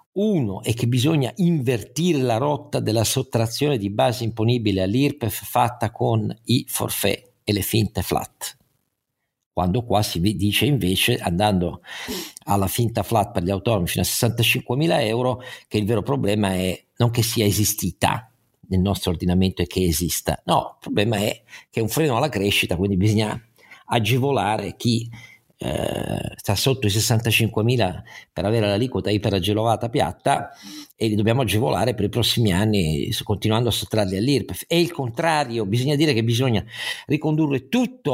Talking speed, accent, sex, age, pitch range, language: 155 wpm, native, male, 50-69, 105-140 Hz, Italian